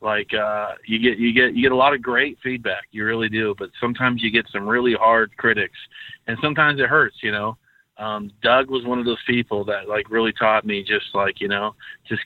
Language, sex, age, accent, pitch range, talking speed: English, male, 30-49, American, 105-125 Hz, 235 wpm